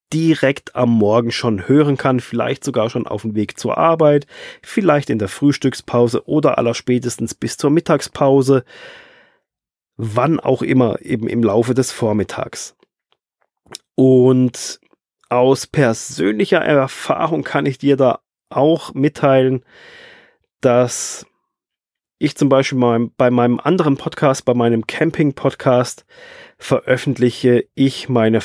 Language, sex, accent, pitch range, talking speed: German, male, German, 115-145 Hz, 120 wpm